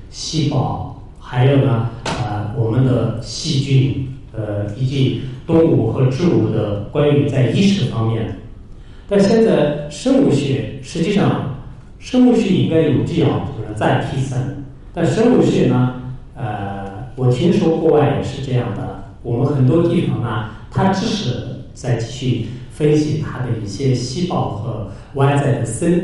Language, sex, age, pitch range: English, male, 40-59, 115-145 Hz